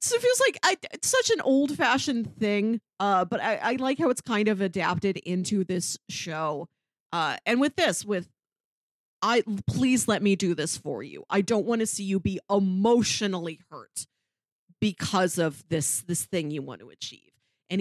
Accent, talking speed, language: American, 190 wpm, English